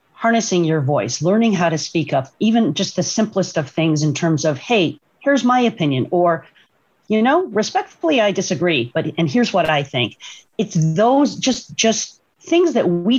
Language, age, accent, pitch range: English, 40-59, American, 155-205 Hz